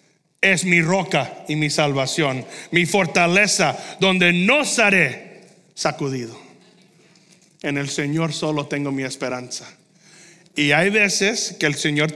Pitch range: 155-190 Hz